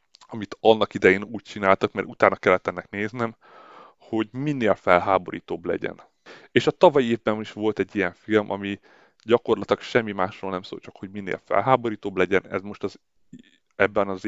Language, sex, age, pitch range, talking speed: Hungarian, male, 30-49, 95-115 Hz, 165 wpm